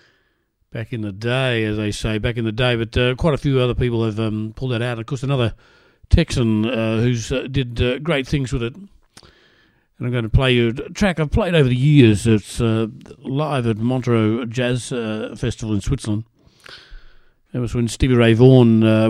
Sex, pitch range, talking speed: male, 105-125 Hz, 205 wpm